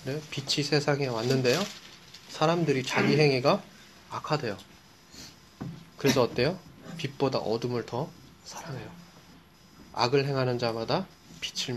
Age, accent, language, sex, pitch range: 20-39, native, Korean, male, 125-160 Hz